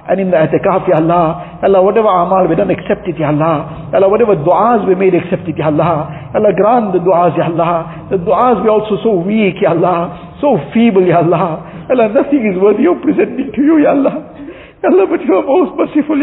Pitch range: 170-250 Hz